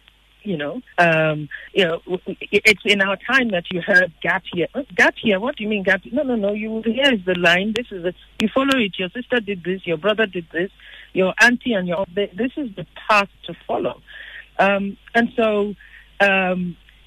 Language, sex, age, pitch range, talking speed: English, female, 60-79, 170-220 Hz, 195 wpm